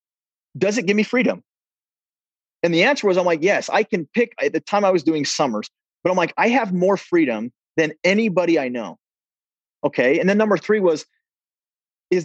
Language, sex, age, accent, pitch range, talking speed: English, male, 30-49, American, 150-205 Hz, 195 wpm